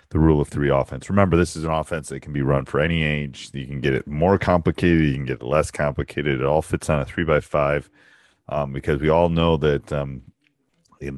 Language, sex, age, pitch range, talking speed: English, male, 40-59, 70-85 Hz, 235 wpm